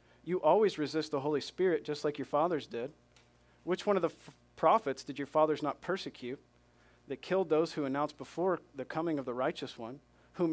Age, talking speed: 40-59, 200 wpm